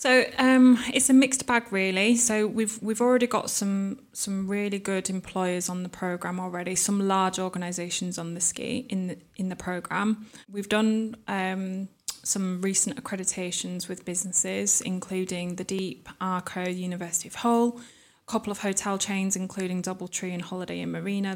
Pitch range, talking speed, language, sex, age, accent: 180-200 Hz, 165 wpm, English, female, 20-39, British